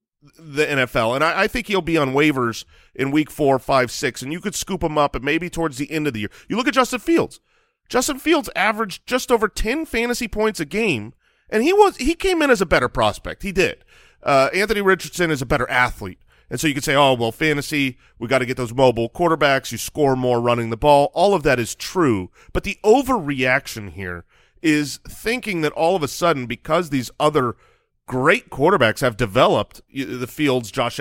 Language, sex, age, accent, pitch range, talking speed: English, male, 40-59, American, 135-200 Hz, 215 wpm